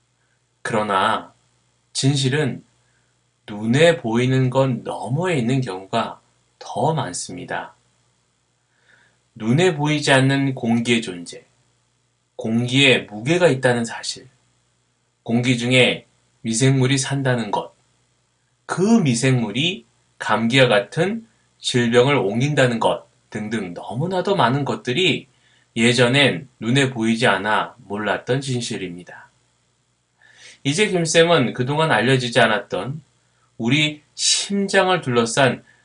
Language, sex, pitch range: Korean, male, 115-145 Hz